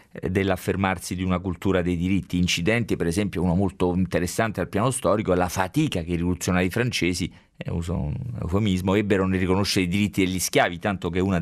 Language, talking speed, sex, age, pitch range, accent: Italian, 190 wpm, male, 40-59, 85-105 Hz, native